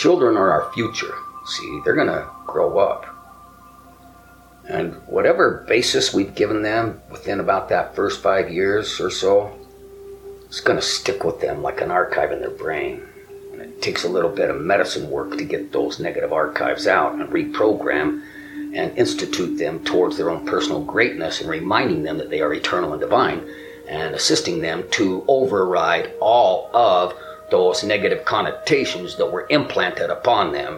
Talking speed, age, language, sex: 160 wpm, 50-69, English, male